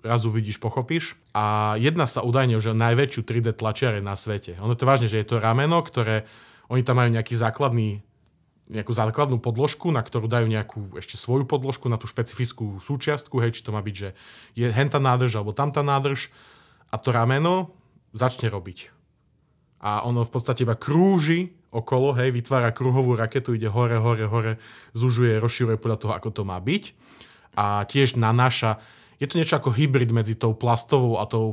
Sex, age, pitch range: male, 20-39, 110-130 Hz